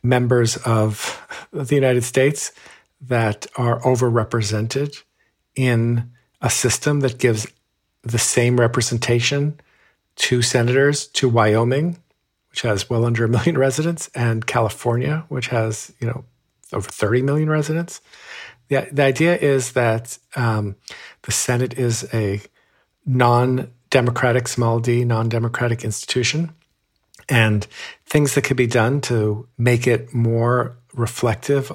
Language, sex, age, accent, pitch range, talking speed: English, male, 50-69, American, 115-135 Hz, 120 wpm